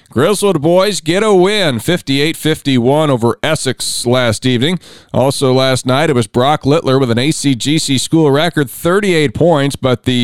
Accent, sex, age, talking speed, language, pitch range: American, male, 40-59, 160 wpm, English, 120-150 Hz